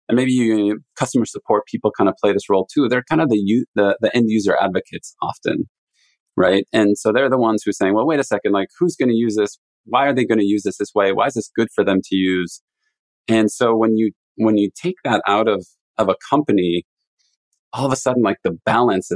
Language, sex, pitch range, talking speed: English, male, 95-115 Hz, 245 wpm